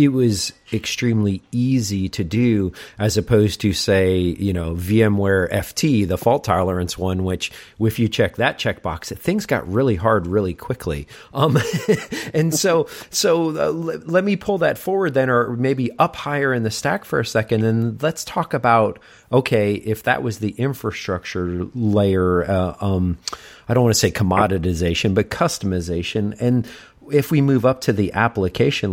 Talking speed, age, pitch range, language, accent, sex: 170 wpm, 40-59, 95-120 Hz, English, American, male